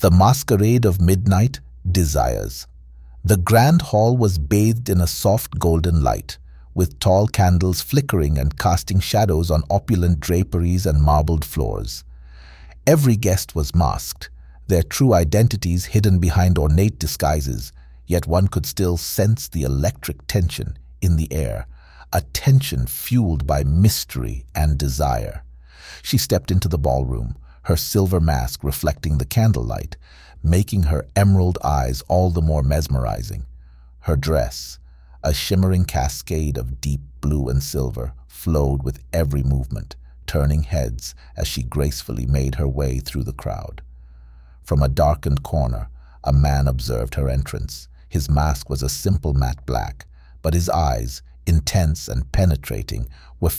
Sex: male